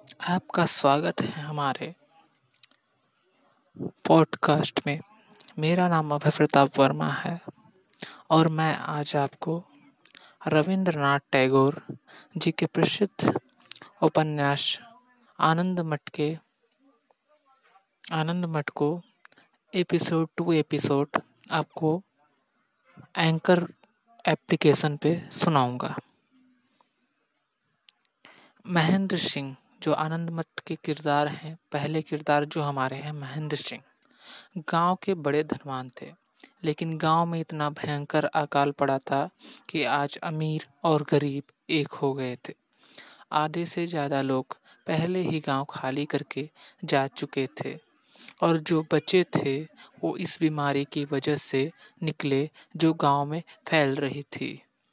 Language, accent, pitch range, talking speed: Hindi, native, 145-175 Hz, 110 wpm